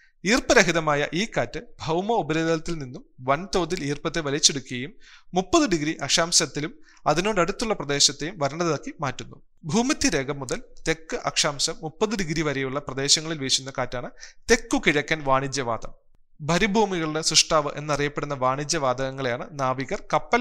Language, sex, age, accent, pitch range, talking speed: Malayalam, male, 30-49, native, 140-185 Hz, 105 wpm